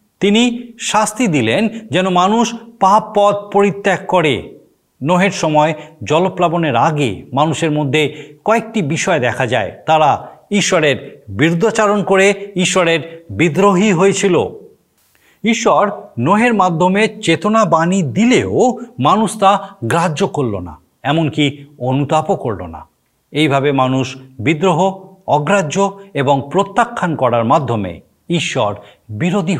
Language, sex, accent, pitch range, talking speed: Bengali, male, native, 140-195 Hz, 105 wpm